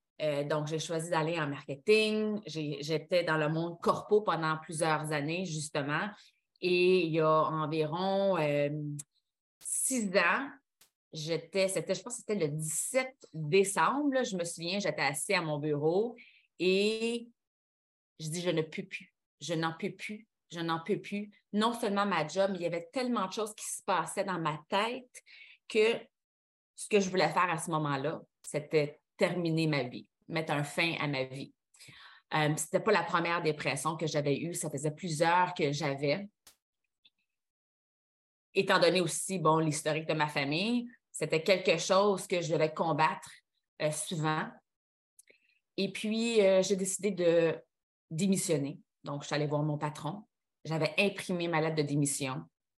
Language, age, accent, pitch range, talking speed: French, 30-49, Canadian, 155-195 Hz, 160 wpm